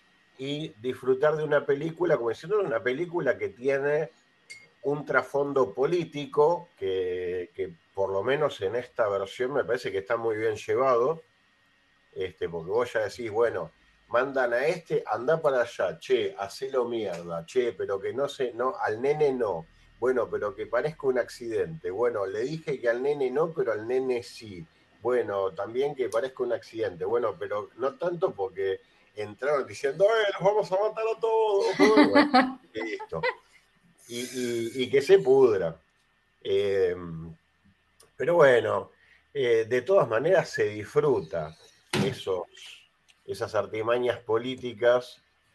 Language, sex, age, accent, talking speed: Spanish, male, 40-59, Argentinian, 140 wpm